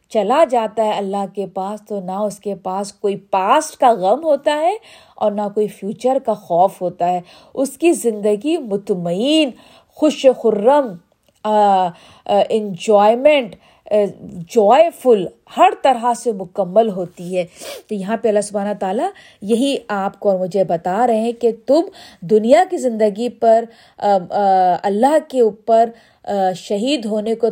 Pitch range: 195-250 Hz